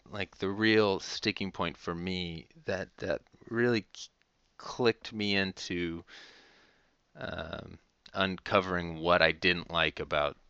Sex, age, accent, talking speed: male, 30-49, American, 120 wpm